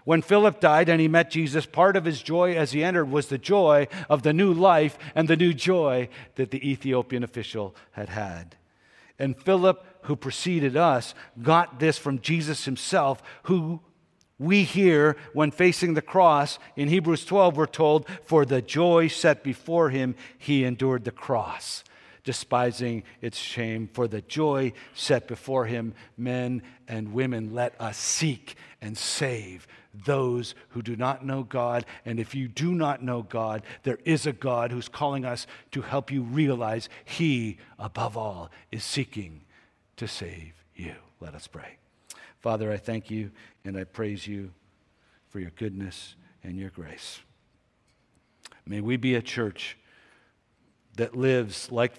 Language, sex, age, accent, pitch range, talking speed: English, male, 50-69, American, 110-150 Hz, 160 wpm